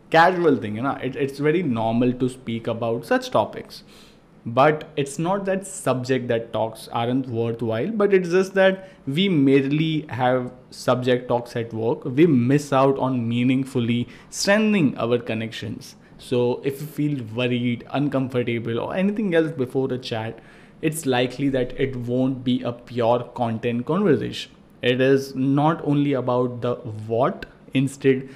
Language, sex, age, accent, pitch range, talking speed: English, male, 20-39, Indian, 120-155 Hz, 150 wpm